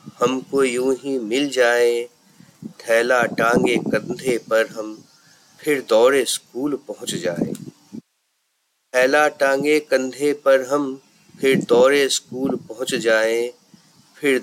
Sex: male